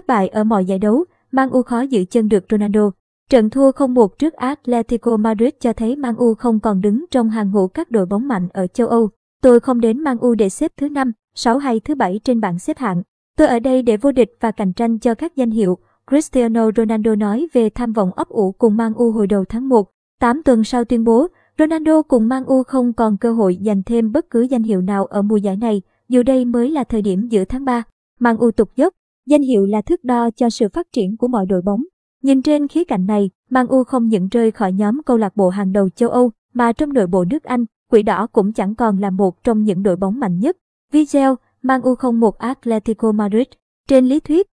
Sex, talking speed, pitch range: male, 240 wpm, 210-255 Hz